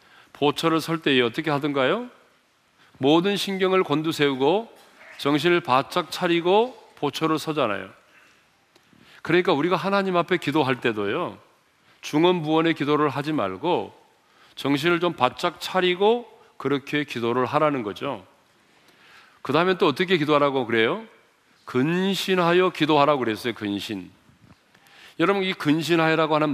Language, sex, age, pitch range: Korean, male, 40-59, 140-180 Hz